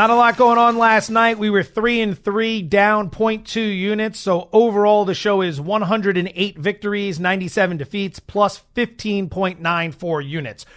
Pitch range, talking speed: 185-225 Hz, 150 wpm